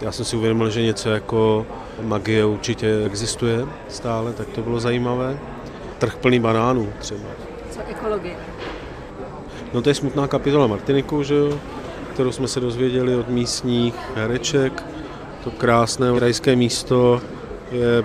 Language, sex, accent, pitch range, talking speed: Czech, male, native, 110-125 Hz, 135 wpm